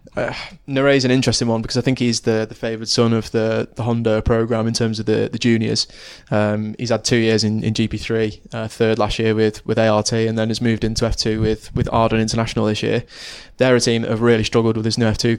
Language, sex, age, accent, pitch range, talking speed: English, male, 20-39, British, 110-120 Hz, 255 wpm